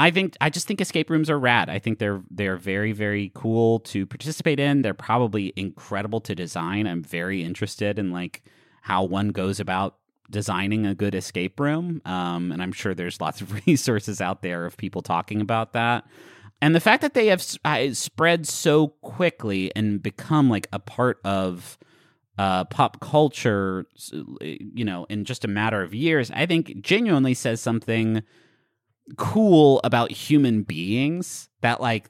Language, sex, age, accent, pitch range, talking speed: English, male, 30-49, American, 100-130 Hz, 170 wpm